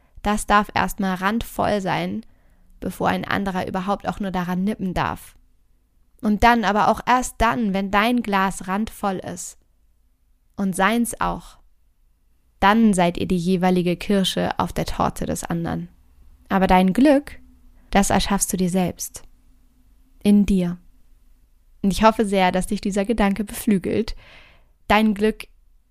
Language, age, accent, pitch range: German, 20-39, German, 180-215 Hz